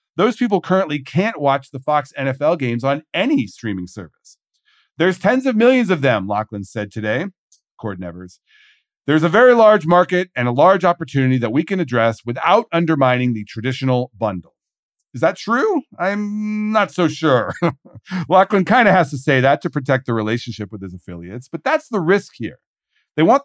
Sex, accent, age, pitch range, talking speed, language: male, American, 40-59, 120-180 Hz, 180 wpm, English